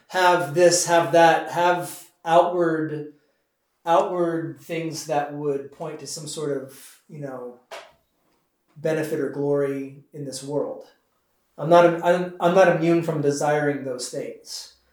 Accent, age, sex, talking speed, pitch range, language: American, 30-49, male, 135 wpm, 140-170 Hz, English